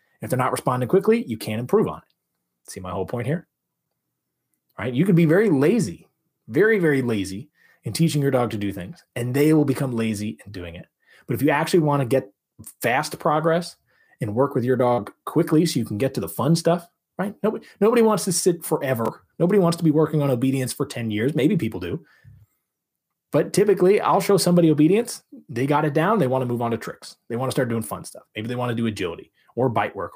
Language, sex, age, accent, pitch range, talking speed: English, male, 30-49, American, 115-160 Hz, 225 wpm